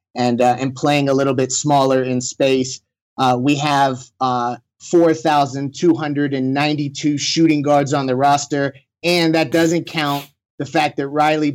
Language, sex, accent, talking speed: English, male, American, 145 wpm